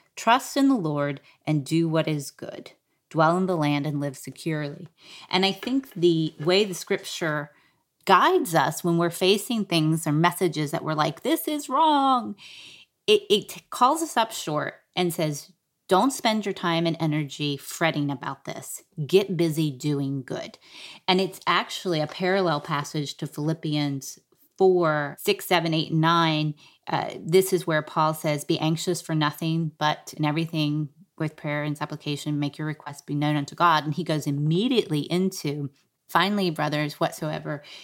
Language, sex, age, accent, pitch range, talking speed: English, female, 30-49, American, 150-185 Hz, 165 wpm